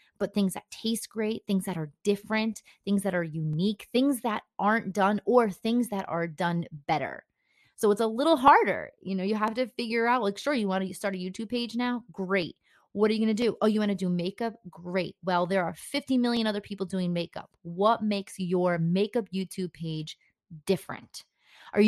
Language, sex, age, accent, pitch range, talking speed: English, female, 30-49, American, 180-215 Hz, 210 wpm